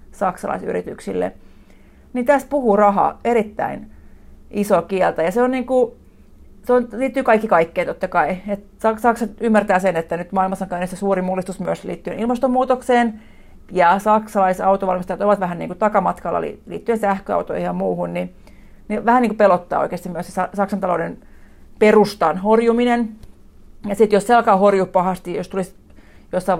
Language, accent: Finnish, native